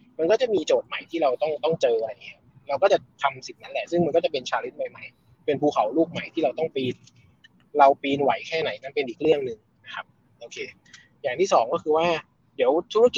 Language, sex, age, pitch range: Thai, male, 20-39, 145-200 Hz